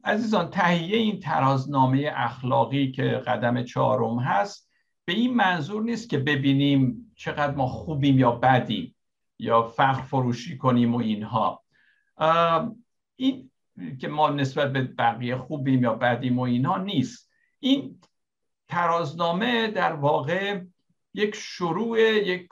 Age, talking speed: 60-79, 120 wpm